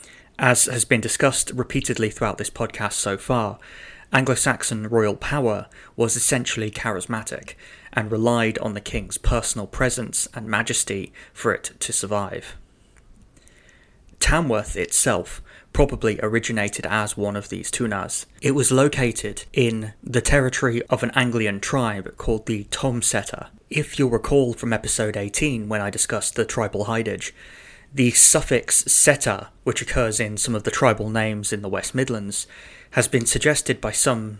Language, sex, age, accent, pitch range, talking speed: English, male, 20-39, British, 105-125 Hz, 145 wpm